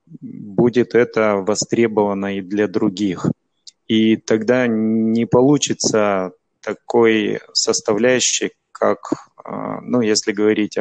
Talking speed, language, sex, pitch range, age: 90 wpm, Russian, male, 105-125 Hz, 20-39